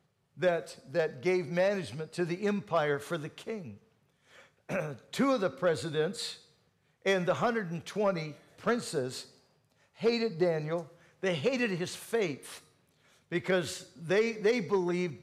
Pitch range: 165-210 Hz